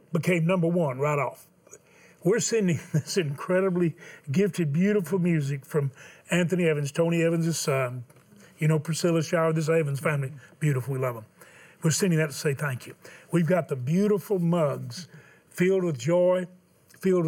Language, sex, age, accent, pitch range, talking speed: English, male, 40-59, American, 140-175 Hz, 155 wpm